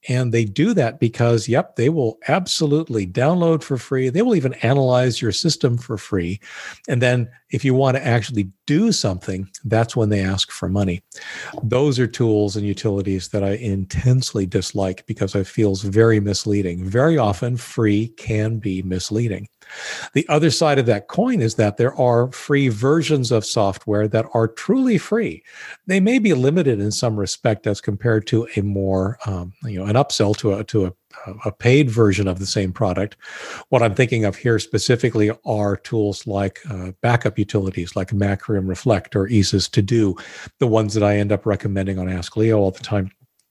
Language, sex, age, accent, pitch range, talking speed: English, male, 50-69, American, 105-135 Hz, 185 wpm